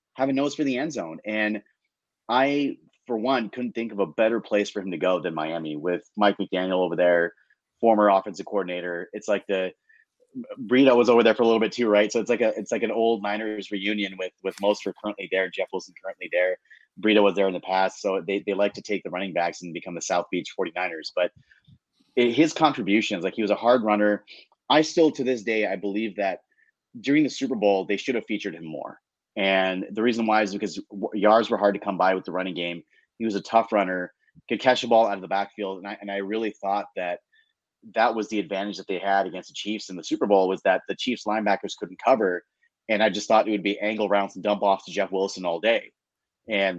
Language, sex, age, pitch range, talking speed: English, male, 30-49, 100-120 Hz, 240 wpm